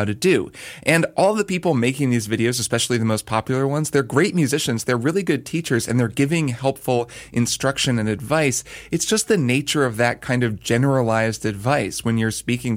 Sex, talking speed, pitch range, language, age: male, 195 wpm, 110-140 Hz, English, 30-49